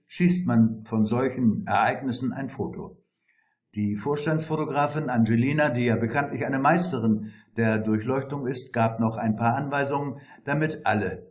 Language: German